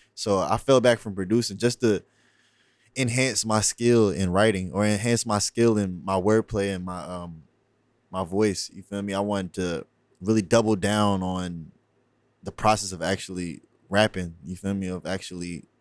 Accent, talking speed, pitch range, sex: American, 170 wpm, 95-120 Hz, male